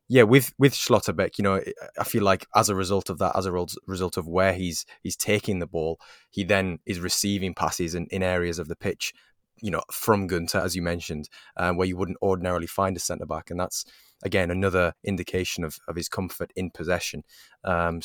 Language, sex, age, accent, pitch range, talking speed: English, male, 20-39, British, 85-100 Hz, 205 wpm